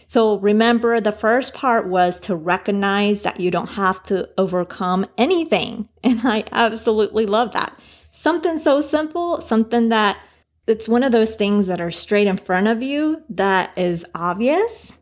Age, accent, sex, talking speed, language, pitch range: 30-49, American, female, 160 wpm, English, 180-225 Hz